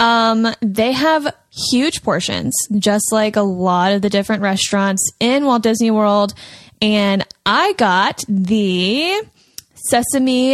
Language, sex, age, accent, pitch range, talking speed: English, female, 10-29, American, 205-245 Hz, 125 wpm